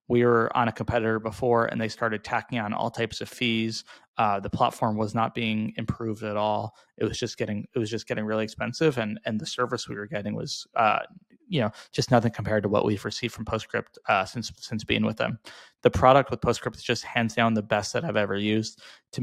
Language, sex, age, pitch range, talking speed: English, male, 20-39, 105-120 Hz, 235 wpm